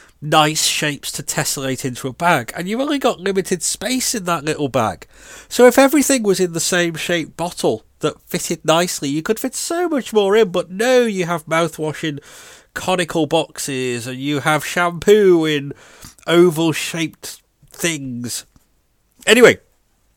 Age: 40-59